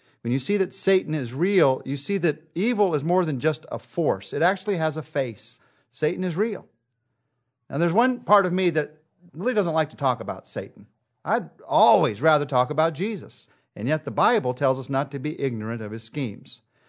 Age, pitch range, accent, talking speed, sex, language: 50-69, 125-165 Hz, American, 205 wpm, male, English